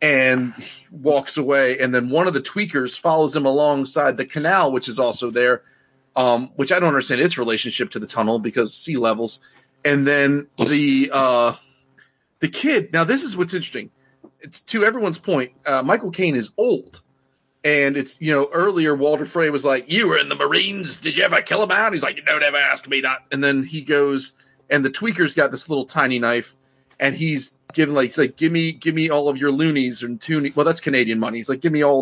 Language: English